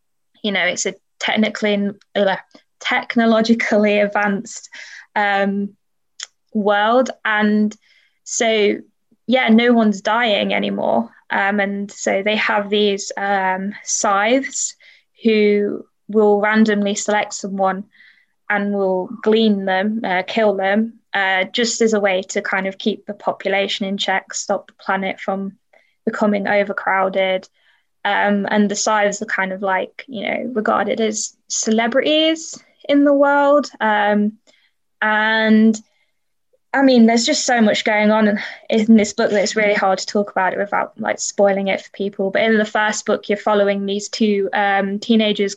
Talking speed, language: 145 wpm, English